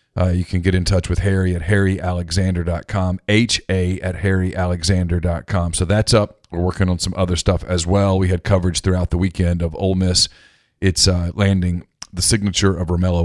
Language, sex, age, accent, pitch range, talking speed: English, male, 40-59, American, 90-105 Hz, 180 wpm